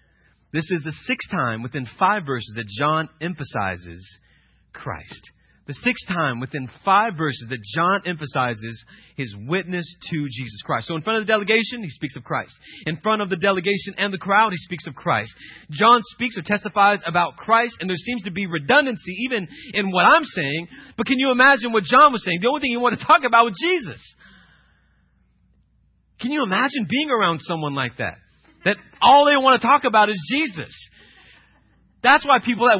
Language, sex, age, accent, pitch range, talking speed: English, male, 30-49, American, 155-245 Hz, 190 wpm